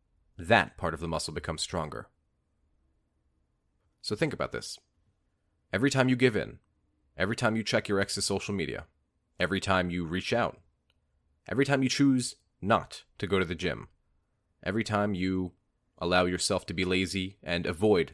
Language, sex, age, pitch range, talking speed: English, male, 30-49, 85-105 Hz, 160 wpm